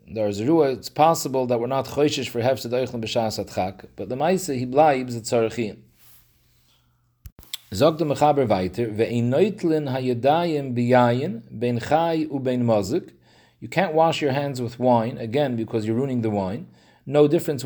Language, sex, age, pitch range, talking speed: English, male, 40-59, 120-155 Hz, 160 wpm